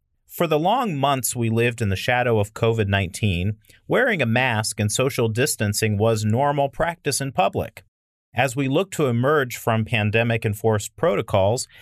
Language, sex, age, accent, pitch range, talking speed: English, male, 40-59, American, 105-145 Hz, 150 wpm